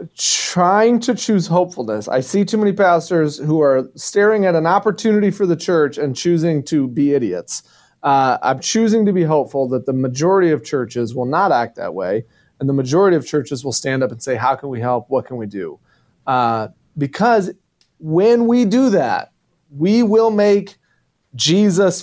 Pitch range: 140-185 Hz